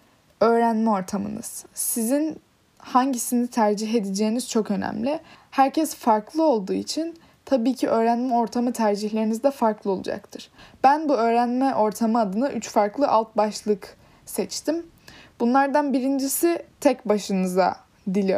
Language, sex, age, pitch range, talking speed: Turkish, female, 10-29, 210-270 Hz, 115 wpm